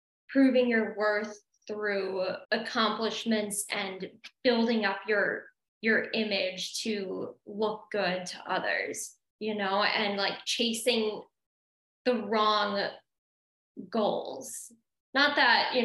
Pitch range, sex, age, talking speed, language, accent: 200-230 Hz, female, 10-29, 100 wpm, English, American